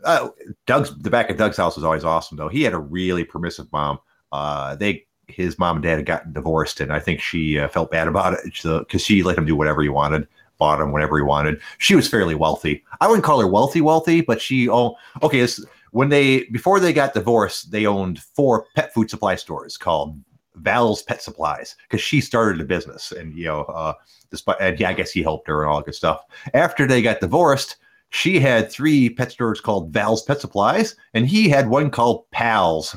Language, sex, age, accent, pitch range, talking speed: English, male, 30-49, American, 80-115 Hz, 220 wpm